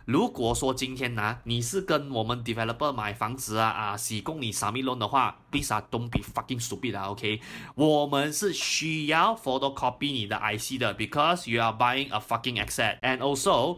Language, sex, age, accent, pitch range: Chinese, male, 20-39, native, 120-175 Hz